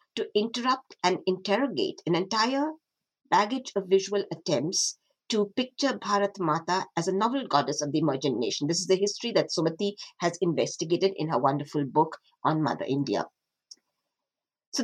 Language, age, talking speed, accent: English, 50-69, 155 wpm, Indian